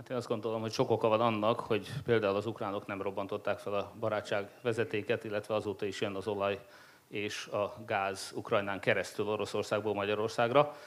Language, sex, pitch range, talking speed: Hungarian, male, 100-120 Hz, 175 wpm